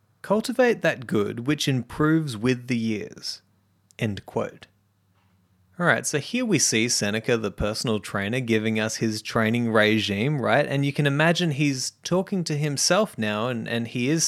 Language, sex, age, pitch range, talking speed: English, male, 20-39, 105-140 Hz, 160 wpm